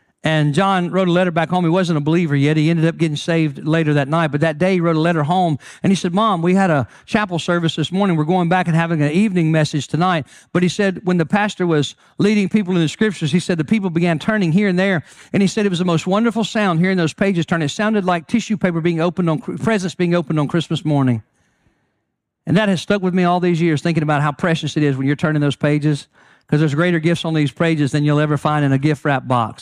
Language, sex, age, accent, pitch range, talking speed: English, male, 50-69, American, 155-205 Hz, 265 wpm